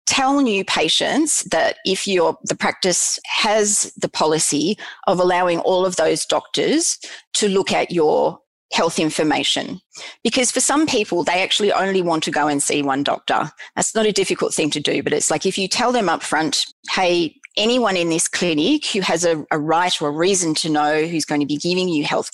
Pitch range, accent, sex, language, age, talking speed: 150-195 Hz, Australian, female, English, 30-49, 200 wpm